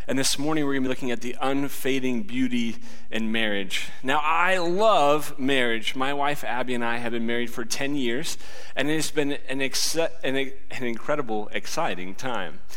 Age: 30-49